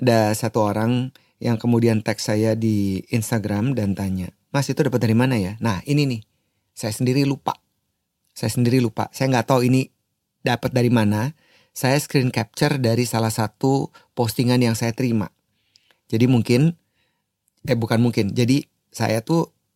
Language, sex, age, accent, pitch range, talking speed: Indonesian, male, 30-49, native, 110-130 Hz, 155 wpm